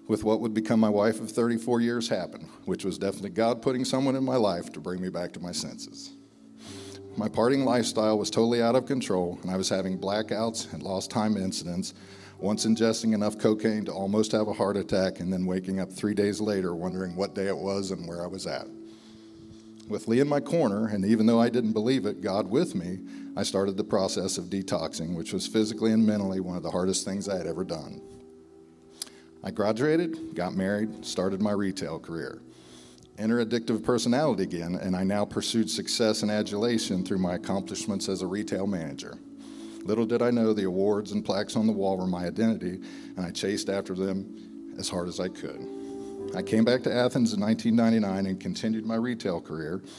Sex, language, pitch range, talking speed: male, English, 95-115 Hz, 200 wpm